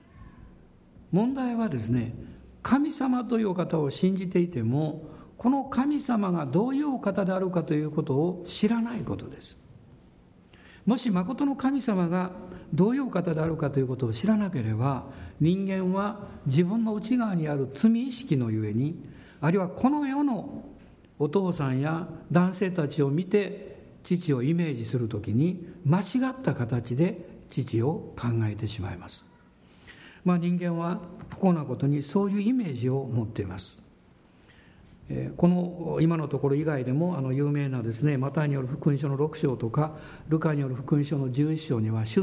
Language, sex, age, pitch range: Japanese, male, 60-79, 130-190 Hz